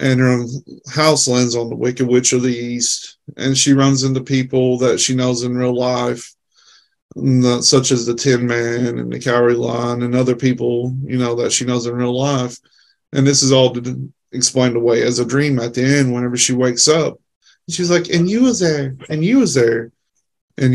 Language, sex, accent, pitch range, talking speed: English, male, American, 120-135 Hz, 200 wpm